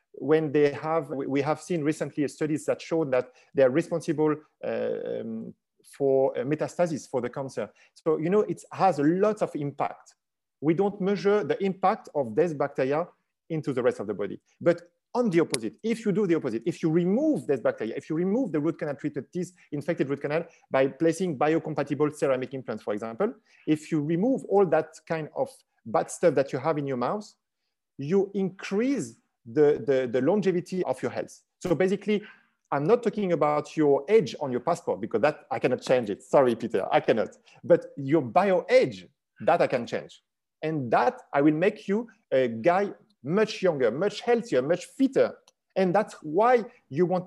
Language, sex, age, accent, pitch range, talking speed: English, male, 40-59, French, 150-205 Hz, 190 wpm